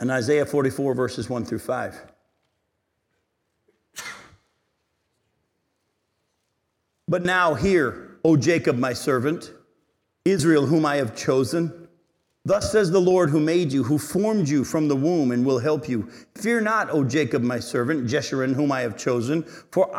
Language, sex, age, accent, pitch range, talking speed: English, male, 50-69, American, 155-215 Hz, 145 wpm